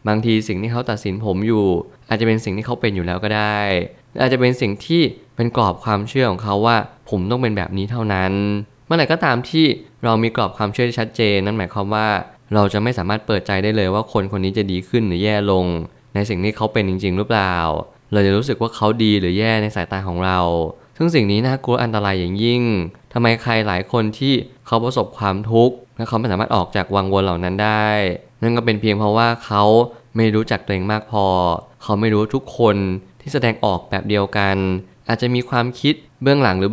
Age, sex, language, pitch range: 20-39, male, Thai, 100-120 Hz